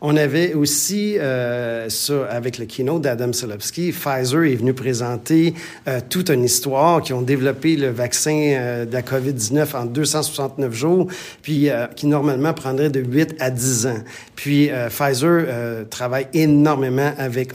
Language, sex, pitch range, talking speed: French, male, 130-150 Hz, 160 wpm